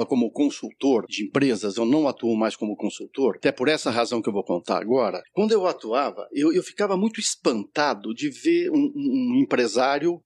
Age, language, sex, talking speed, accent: 60-79, Portuguese, male, 185 wpm, Brazilian